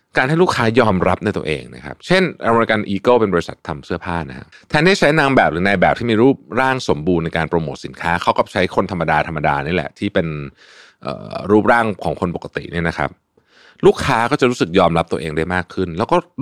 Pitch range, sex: 80-115 Hz, male